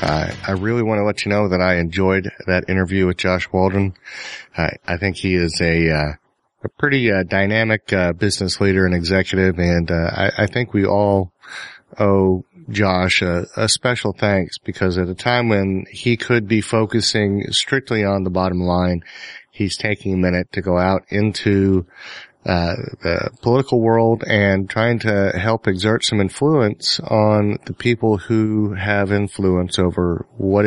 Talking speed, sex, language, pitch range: 170 wpm, male, English, 90-110 Hz